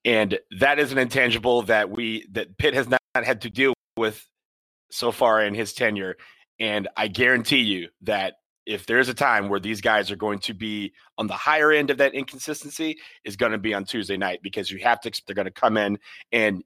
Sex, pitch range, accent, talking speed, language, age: male, 105-130 Hz, American, 225 wpm, English, 30-49